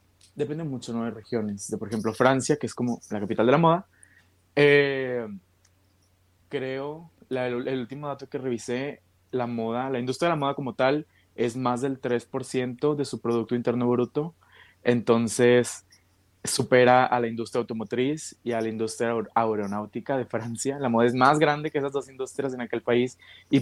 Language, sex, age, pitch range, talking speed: Spanish, male, 20-39, 110-130 Hz, 175 wpm